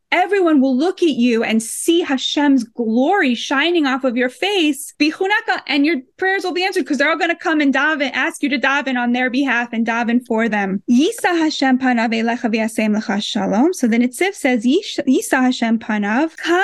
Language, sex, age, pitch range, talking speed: English, female, 10-29, 235-300 Hz, 185 wpm